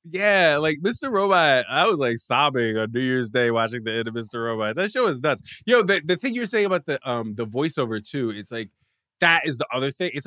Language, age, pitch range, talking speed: English, 20-39, 125-200 Hz, 250 wpm